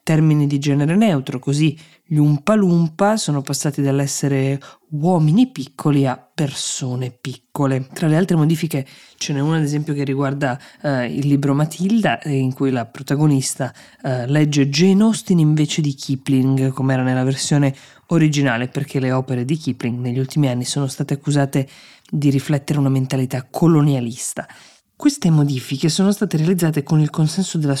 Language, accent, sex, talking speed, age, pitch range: Italian, native, female, 150 wpm, 20-39, 135-155 Hz